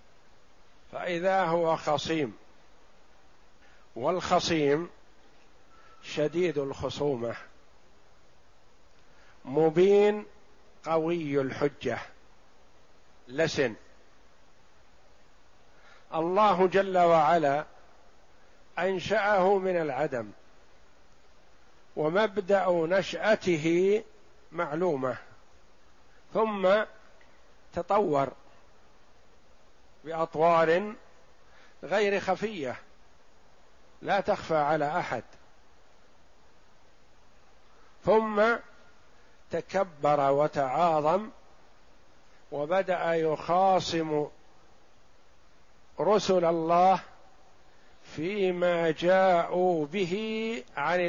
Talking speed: 45 wpm